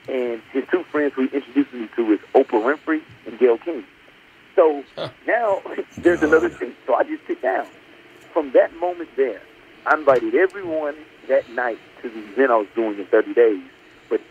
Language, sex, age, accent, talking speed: English, male, 40-59, American, 185 wpm